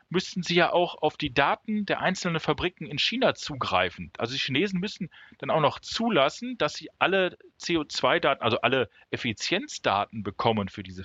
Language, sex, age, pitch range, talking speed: German, male, 40-59, 115-165 Hz, 170 wpm